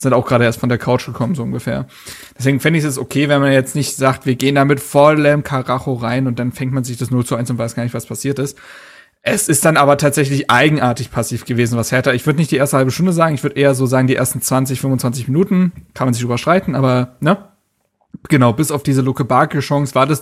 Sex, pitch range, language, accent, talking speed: male, 130-165 Hz, German, German, 255 wpm